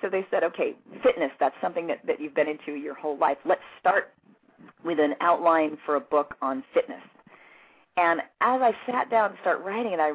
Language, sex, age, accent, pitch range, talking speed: English, female, 40-59, American, 155-220 Hz, 205 wpm